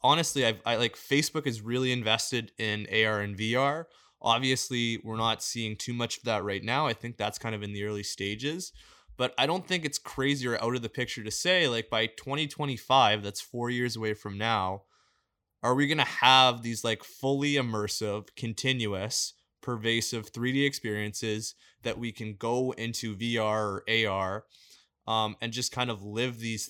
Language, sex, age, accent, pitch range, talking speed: English, male, 20-39, American, 110-125 Hz, 180 wpm